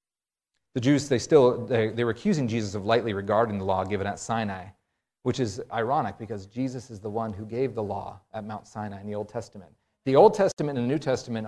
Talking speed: 225 wpm